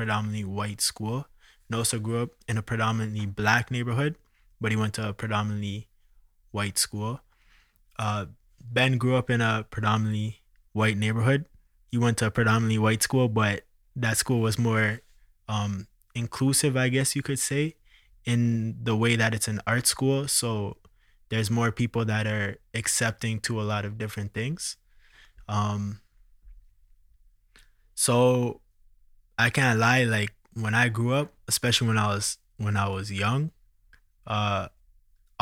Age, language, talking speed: 20-39, English, 145 wpm